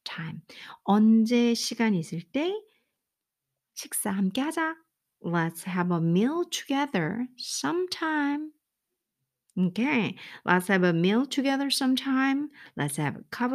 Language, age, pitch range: Korean, 50-69, 170-250 Hz